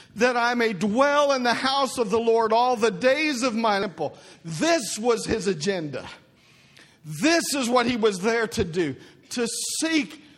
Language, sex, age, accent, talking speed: English, male, 50-69, American, 175 wpm